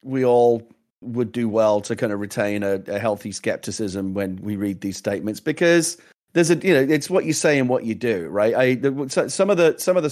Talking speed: 230 wpm